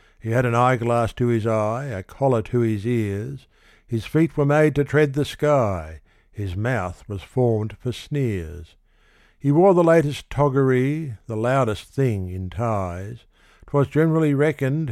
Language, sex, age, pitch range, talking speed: English, male, 60-79, 110-145 Hz, 155 wpm